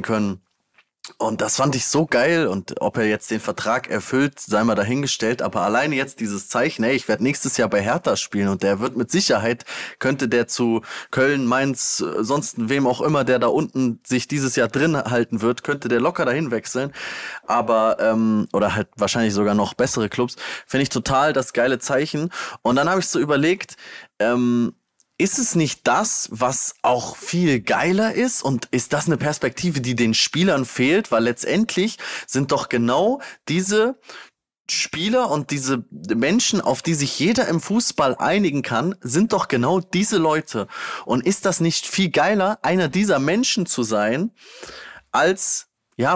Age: 20-39